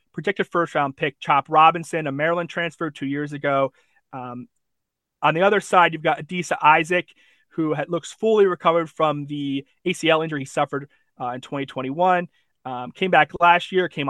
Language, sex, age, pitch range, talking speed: English, male, 30-49, 145-175 Hz, 175 wpm